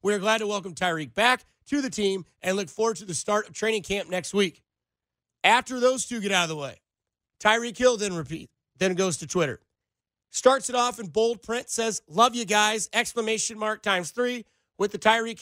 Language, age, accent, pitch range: English, 30-49, American, 195-225 Hz